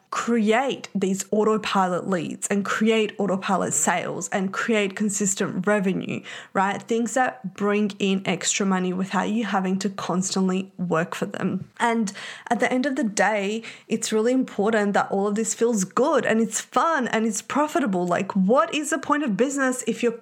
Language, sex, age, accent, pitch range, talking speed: English, female, 20-39, Australian, 190-225 Hz, 170 wpm